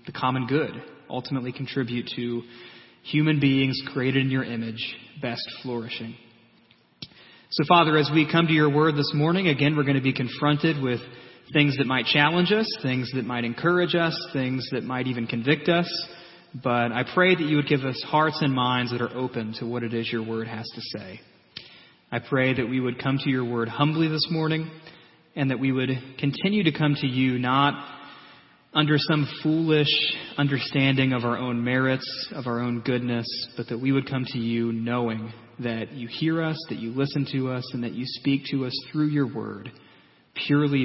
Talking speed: 190 wpm